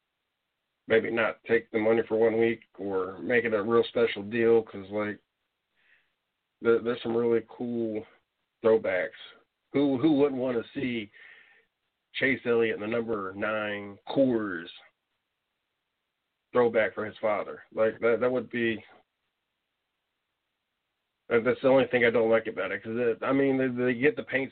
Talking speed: 155 wpm